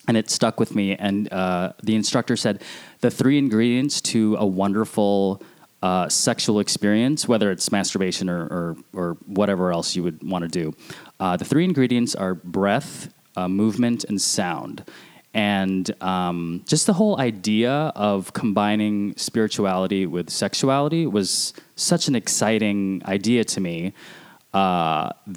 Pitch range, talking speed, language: 95-120 Hz, 145 wpm, English